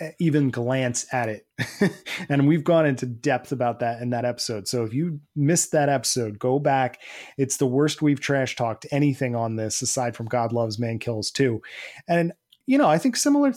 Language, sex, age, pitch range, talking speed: English, male, 30-49, 120-145 Hz, 195 wpm